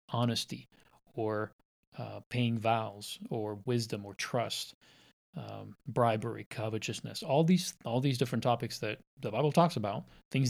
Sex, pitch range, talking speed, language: male, 110-135 Hz, 135 wpm, English